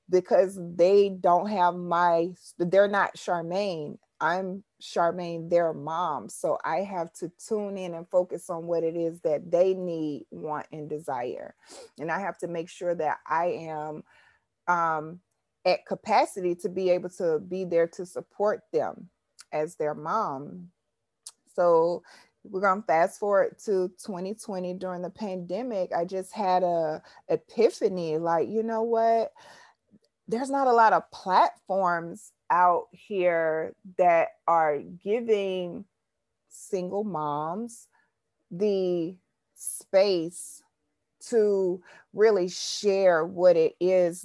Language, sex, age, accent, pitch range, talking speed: English, female, 30-49, American, 170-205 Hz, 125 wpm